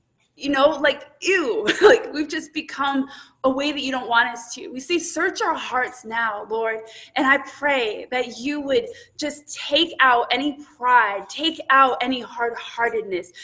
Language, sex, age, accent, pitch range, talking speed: English, female, 20-39, American, 220-310 Hz, 170 wpm